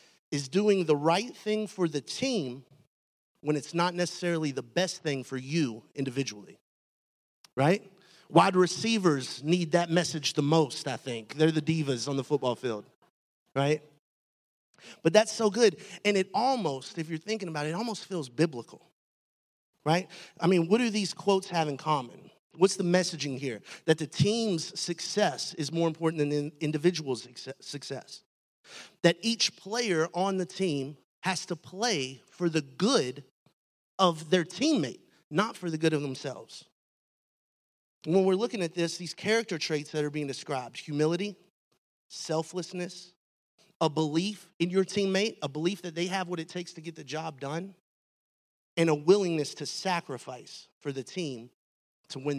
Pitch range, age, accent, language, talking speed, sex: 145-185 Hz, 30-49, American, English, 160 wpm, male